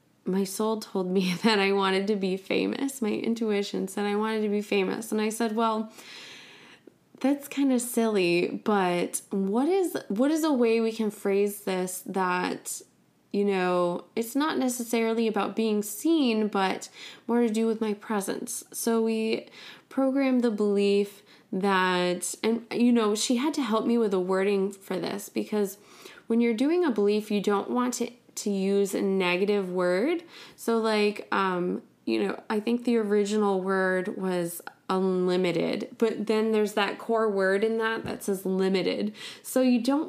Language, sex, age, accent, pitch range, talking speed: English, female, 20-39, American, 195-235 Hz, 170 wpm